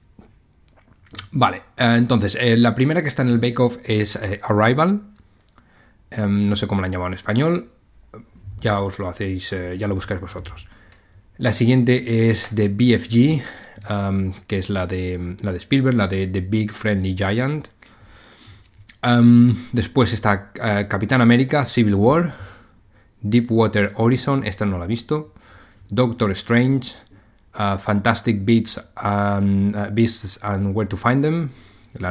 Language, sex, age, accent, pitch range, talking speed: Spanish, male, 20-39, Spanish, 100-115 Hz, 135 wpm